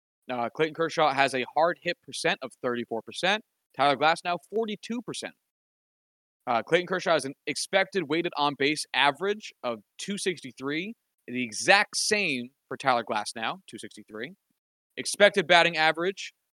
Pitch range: 135-190 Hz